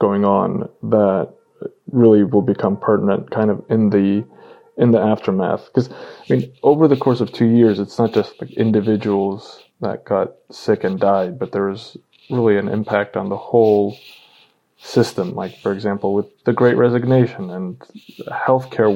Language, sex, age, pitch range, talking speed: English, male, 20-39, 100-115 Hz, 160 wpm